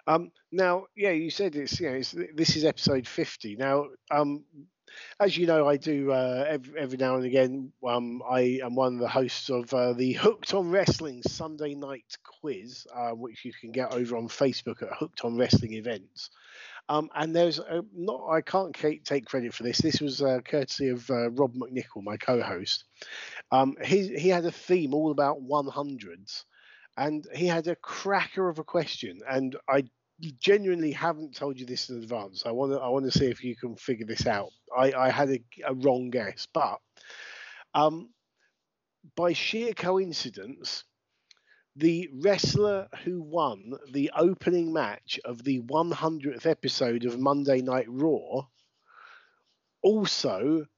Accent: British